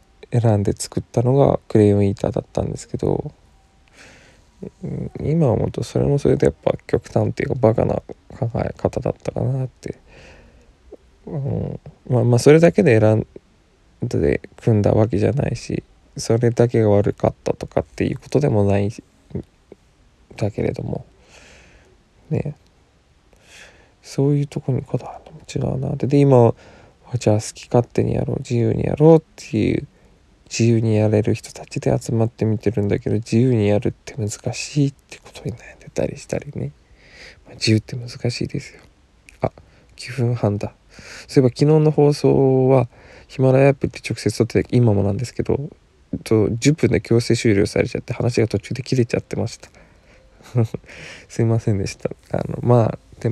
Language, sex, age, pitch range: Japanese, male, 20-39, 105-130 Hz